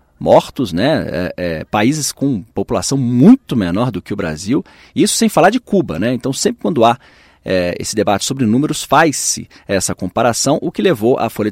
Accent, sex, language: Brazilian, male, Portuguese